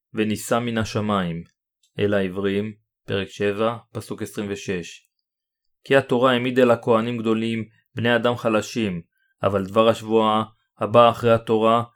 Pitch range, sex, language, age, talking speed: 105-120 Hz, male, Hebrew, 30-49, 120 wpm